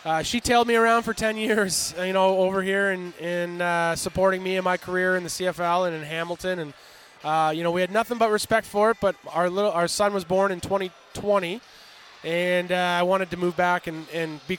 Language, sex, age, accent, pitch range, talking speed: English, male, 20-39, American, 165-195 Hz, 230 wpm